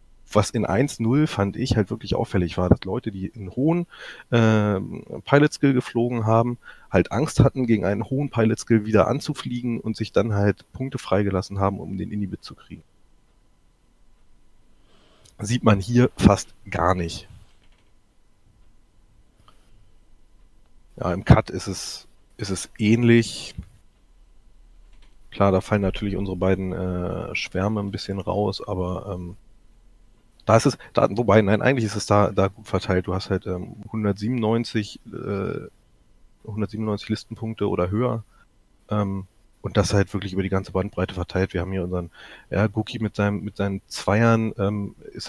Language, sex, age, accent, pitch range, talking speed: German, male, 30-49, German, 95-115 Hz, 145 wpm